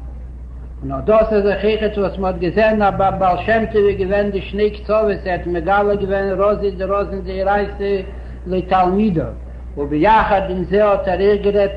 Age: 60-79